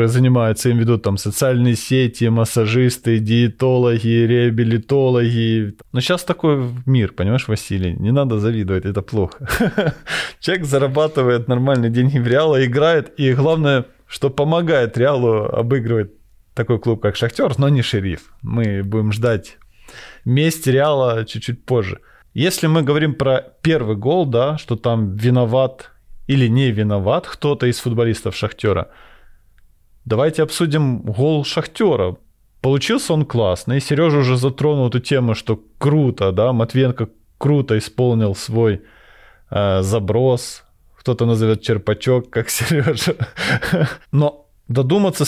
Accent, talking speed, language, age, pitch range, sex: native, 120 wpm, Russian, 20-39, 110-140 Hz, male